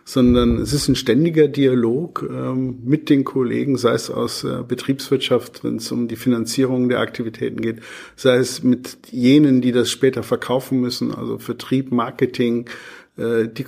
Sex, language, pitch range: male, German, 120-135 Hz